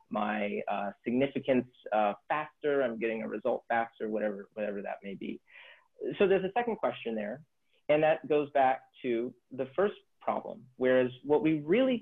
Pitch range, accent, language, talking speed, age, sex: 125-180 Hz, American, English, 165 wpm, 30-49, male